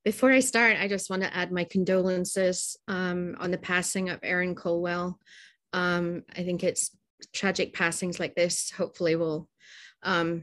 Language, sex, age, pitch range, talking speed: English, female, 20-39, 175-200 Hz, 160 wpm